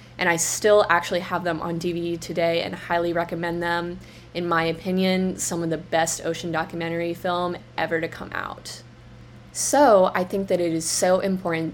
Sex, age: female, 20-39